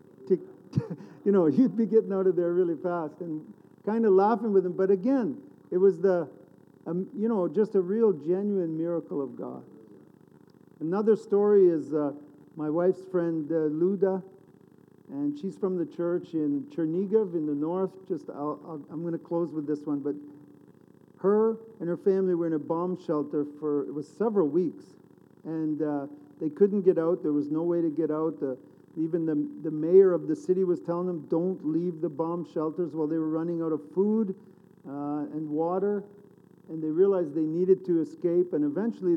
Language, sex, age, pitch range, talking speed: English, male, 50-69, 155-190 Hz, 190 wpm